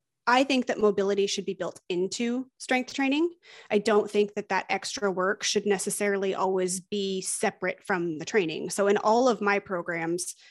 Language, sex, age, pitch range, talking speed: English, female, 20-39, 195-230 Hz, 175 wpm